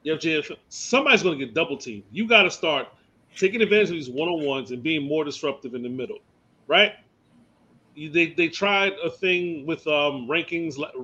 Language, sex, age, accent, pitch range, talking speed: English, male, 30-49, American, 135-180 Hz, 185 wpm